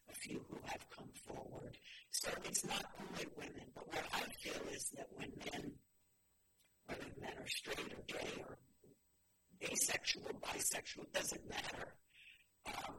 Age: 50-69